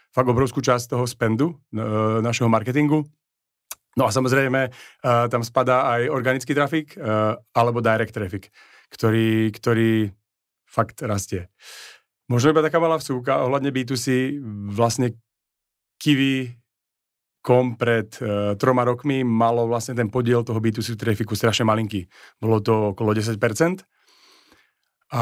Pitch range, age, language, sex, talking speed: 110-125 Hz, 40-59, Slovak, male, 115 wpm